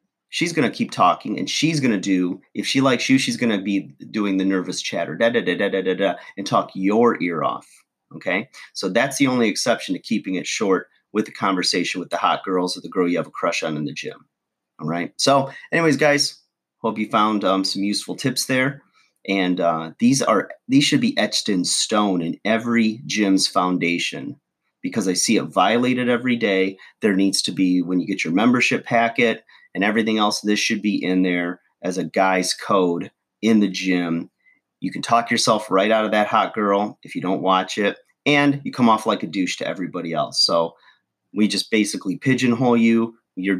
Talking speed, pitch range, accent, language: 210 wpm, 95-120 Hz, American, English